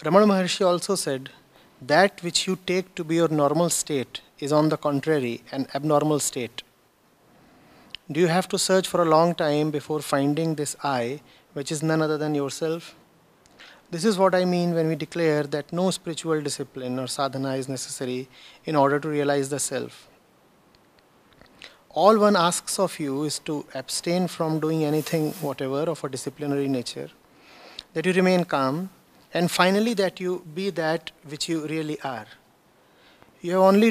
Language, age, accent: English, 30-49, Indian